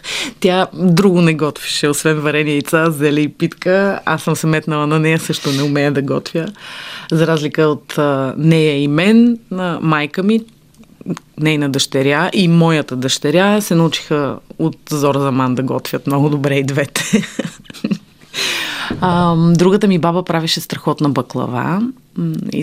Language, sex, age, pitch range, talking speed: Bulgarian, female, 30-49, 145-185 Hz, 140 wpm